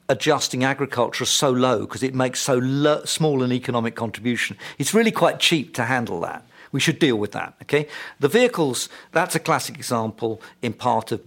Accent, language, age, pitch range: British, English, 50-69, 115-155 Hz